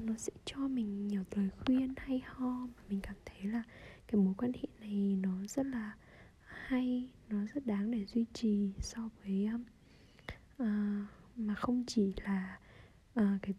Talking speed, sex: 165 wpm, female